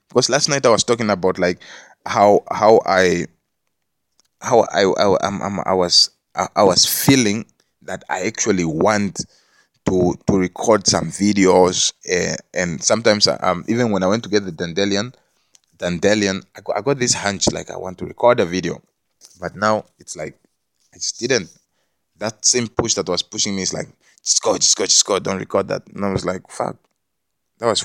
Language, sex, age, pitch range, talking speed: English, male, 20-39, 95-120 Hz, 195 wpm